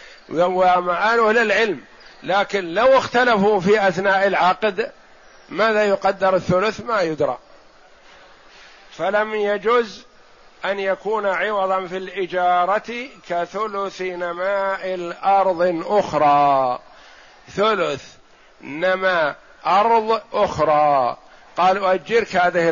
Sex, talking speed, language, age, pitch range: male, 80 wpm, Arabic, 50-69, 180-215 Hz